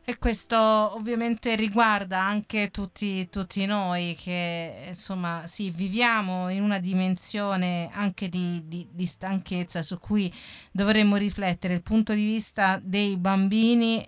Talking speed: 130 wpm